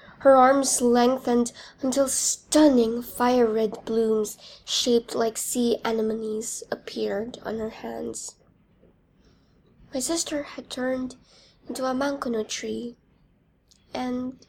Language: English